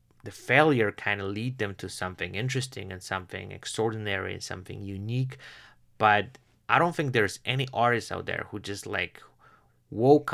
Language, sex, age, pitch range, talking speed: English, male, 30-49, 95-115 Hz, 165 wpm